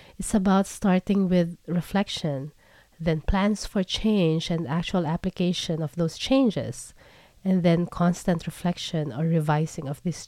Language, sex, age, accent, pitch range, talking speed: English, female, 20-39, Filipino, 160-195 Hz, 135 wpm